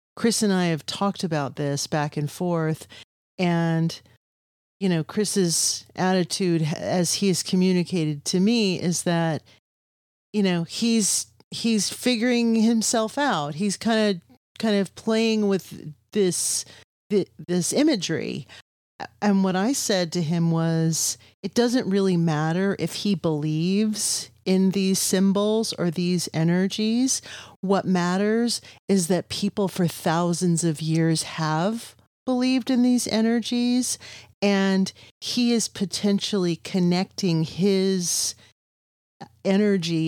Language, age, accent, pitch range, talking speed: English, 40-59, American, 160-200 Hz, 120 wpm